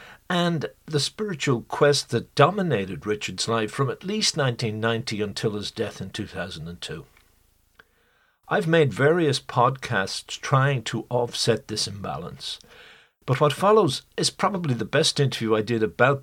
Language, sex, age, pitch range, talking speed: English, male, 60-79, 110-145 Hz, 135 wpm